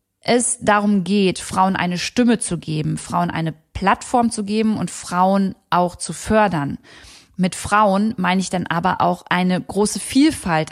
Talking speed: 155 wpm